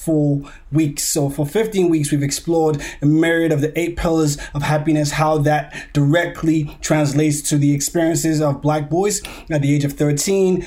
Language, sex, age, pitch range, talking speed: English, male, 20-39, 145-160 Hz, 170 wpm